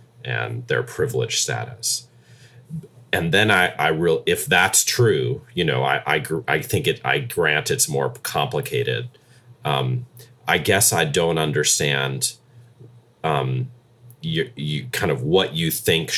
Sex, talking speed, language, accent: male, 145 wpm, English, American